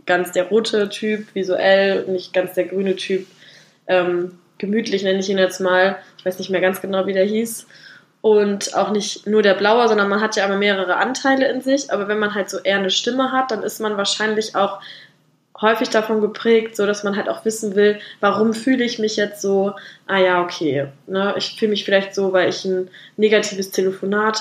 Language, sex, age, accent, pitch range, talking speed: German, female, 10-29, German, 190-220 Hz, 210 wpm